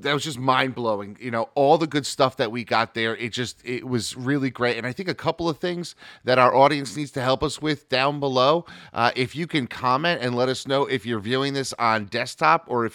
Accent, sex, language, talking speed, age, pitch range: American, male, English, 250 wpm, 30-49, 115-140 Hz